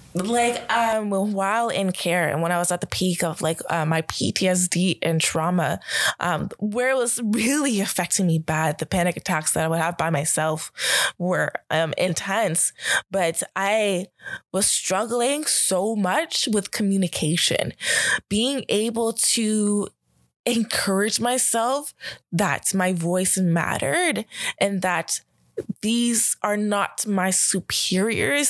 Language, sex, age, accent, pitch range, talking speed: English, female, 20-39, American, 170-215 Hz, 135 wpm